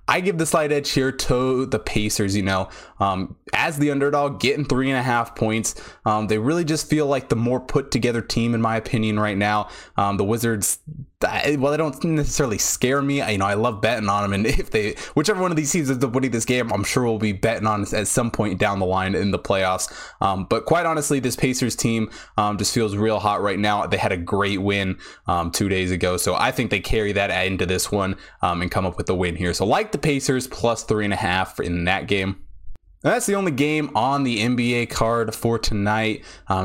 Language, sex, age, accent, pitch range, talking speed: English, male, 20-39, American, 100-135 Hz, 240 wpm